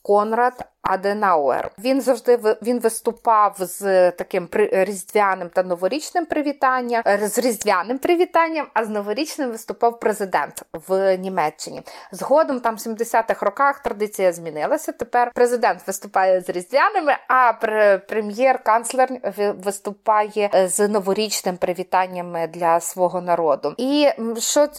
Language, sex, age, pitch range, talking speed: Ukrainian, female, 30-49, 195-235 Hz, 110 wpm